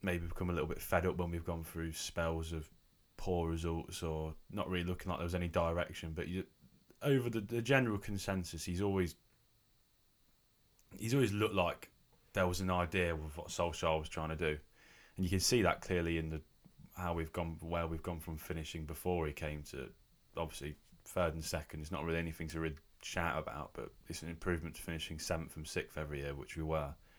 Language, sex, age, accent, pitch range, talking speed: English, male, 20-39, British, 80-95 Hz, 205 wpm